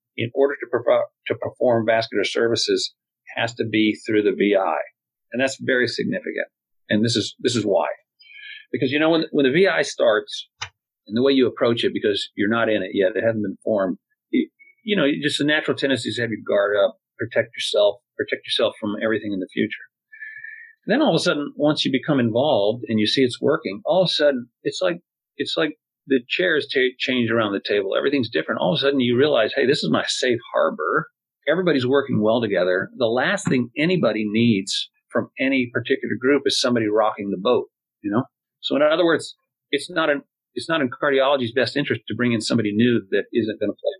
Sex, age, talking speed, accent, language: male, 40-59, 210 wpm, American, English